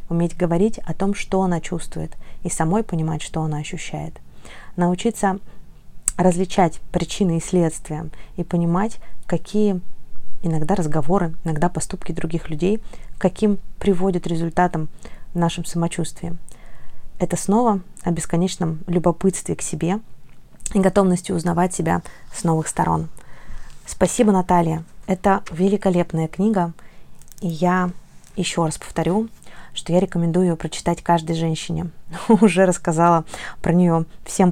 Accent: native